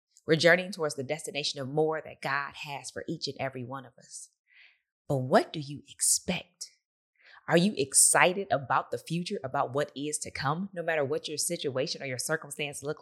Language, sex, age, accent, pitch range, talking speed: English, female, 20-39, American, 135-175 Hz, 195 wpm